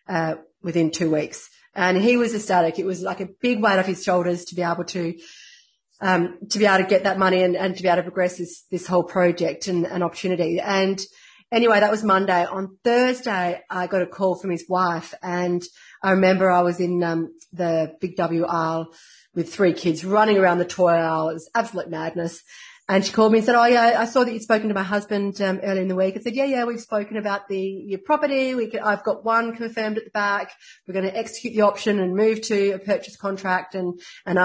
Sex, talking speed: female, 235 wpm